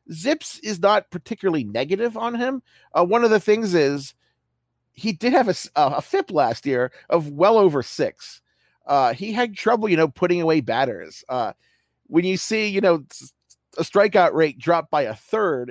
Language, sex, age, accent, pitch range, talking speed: English, male, 40-59, American, 135-210 Hz, 185 wpm